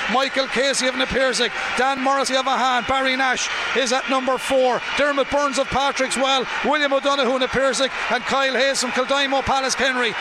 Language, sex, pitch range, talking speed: English, male, 250-275 Hz, 175 wpm